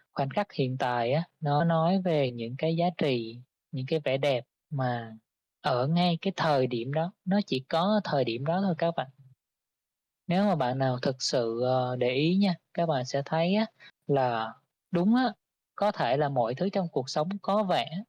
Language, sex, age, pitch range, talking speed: Vietnamese, female, 20-39, 135-170 Hz, 190 wpm